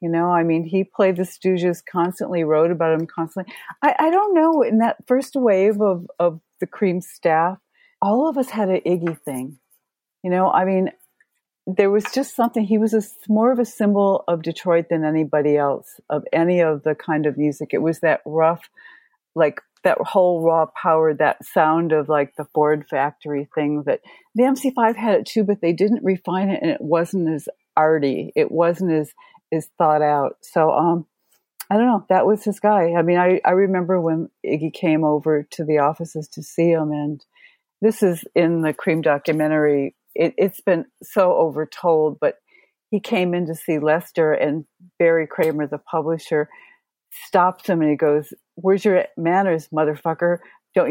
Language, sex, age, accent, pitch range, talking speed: English, female, 40-59, American, 155-200 Hz, 185 wpm